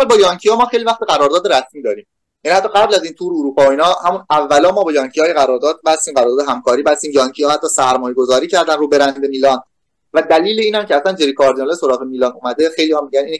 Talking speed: 225 wpm